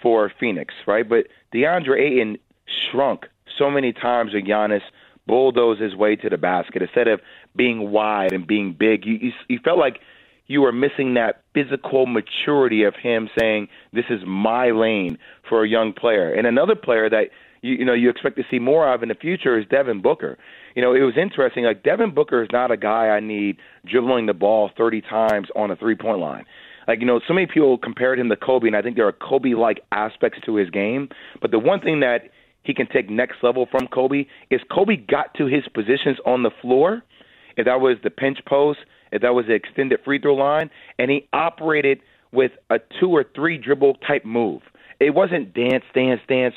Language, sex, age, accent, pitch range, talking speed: English, male, 30-49, American, 115-150 Hz, 205 wpm